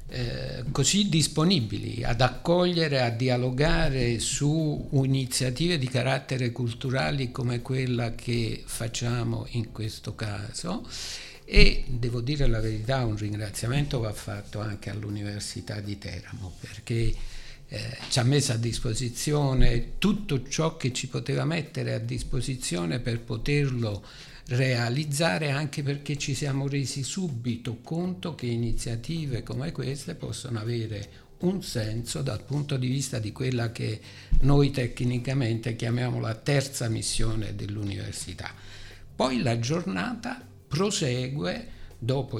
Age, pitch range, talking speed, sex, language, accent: 60-79, 115-140 Hz, 120 wpm, male, Italian, native